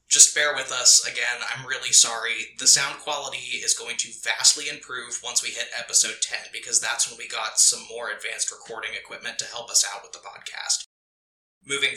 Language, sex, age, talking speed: English, male, 20-39, 195 wpm